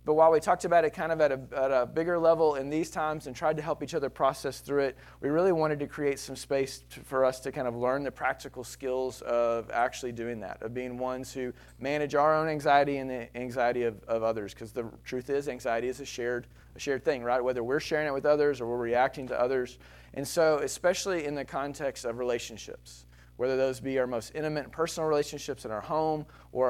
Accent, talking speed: American, 235 wpm